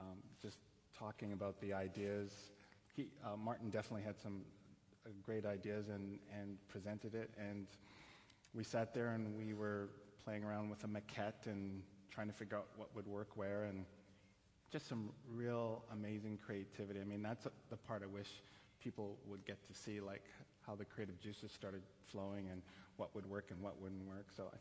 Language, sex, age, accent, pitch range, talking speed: English, male, 30-49, American, 100-110 Hz, 180 wpm